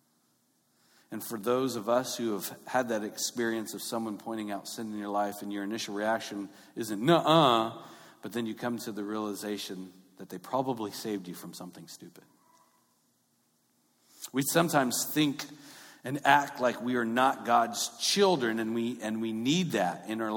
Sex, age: male, 40-59